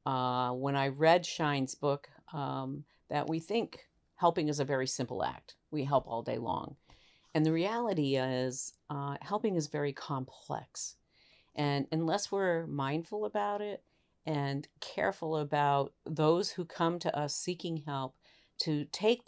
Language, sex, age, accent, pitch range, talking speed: English, female, 50-69, American, 135-165 Hz, 150 wpm